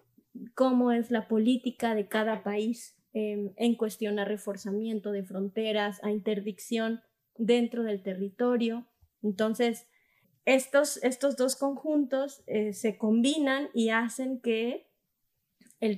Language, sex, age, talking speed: Spanish, female, 20-39, 115 wpm